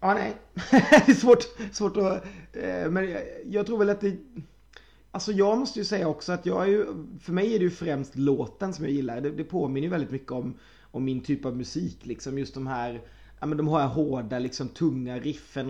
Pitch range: 135-175 Hz